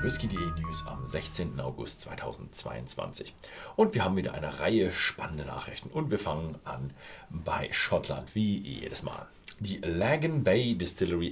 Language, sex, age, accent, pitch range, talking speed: German, male, 40-59, German, 80-110 Hz, 145 wpm